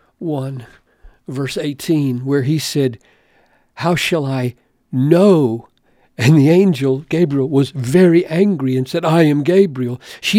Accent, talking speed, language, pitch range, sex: American, 135 wpm, English, 130-170 Hz, male